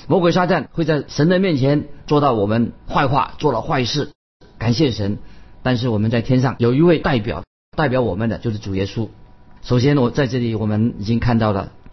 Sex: male